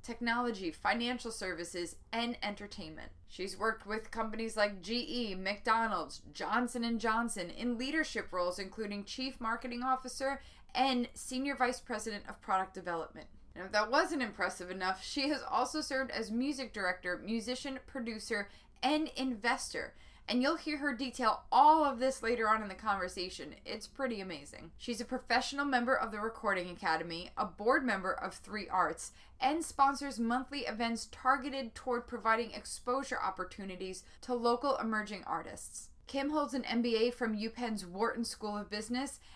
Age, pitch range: 20-39, 205-260 Hz